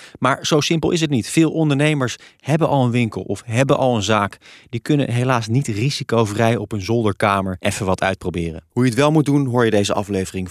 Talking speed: 215 wpm